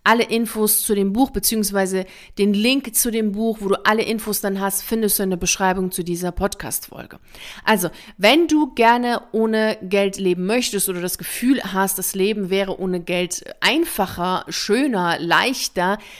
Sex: female